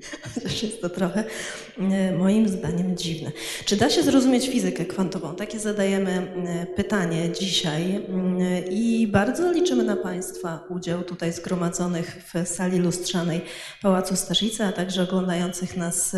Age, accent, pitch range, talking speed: 20-39, native, 180-210 Hz, 125 wpm